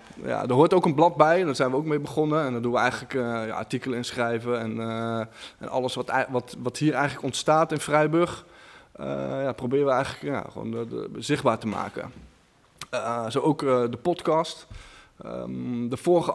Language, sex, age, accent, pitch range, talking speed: Dutch, male, 20-39, Dutch, 120-150 Hz, 200 wpm